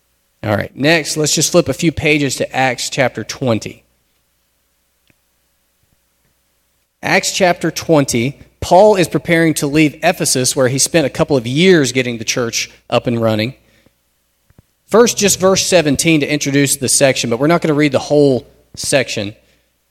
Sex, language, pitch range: male, English, 110-155 Hz